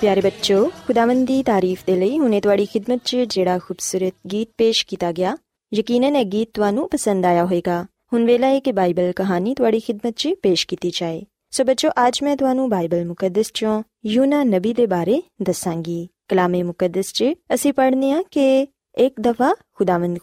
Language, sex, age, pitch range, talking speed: Punjabi, female, 20-39, 185-265 Hz, 95 wpm